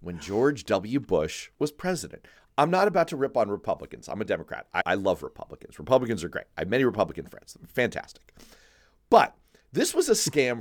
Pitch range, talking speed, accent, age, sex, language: 110-175 Hz, 190 wpm, American, 40-59, male, English